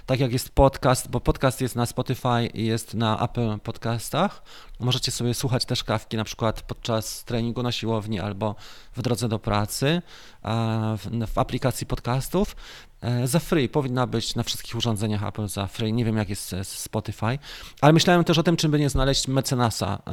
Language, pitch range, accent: Polish, 110-135 Hz, native